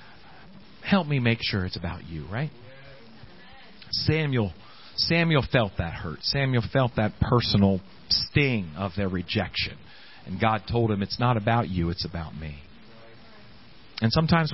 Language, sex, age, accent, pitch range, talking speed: English, male, 40-59, American, 110-180 Hz, 140 wpm